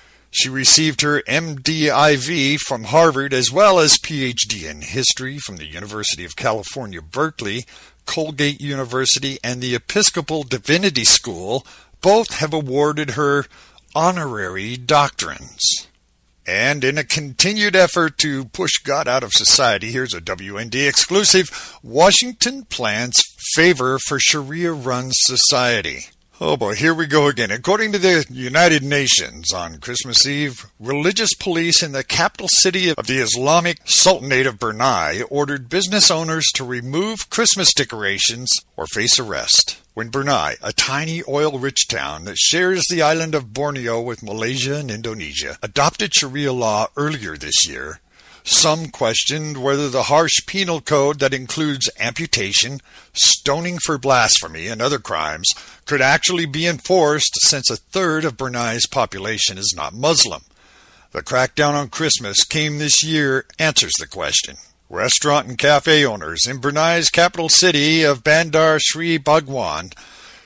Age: 50-69